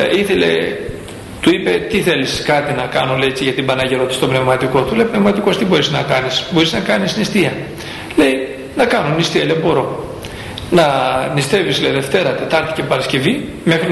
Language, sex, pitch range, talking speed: Greek, male, 130-195 Hz, 175 wpm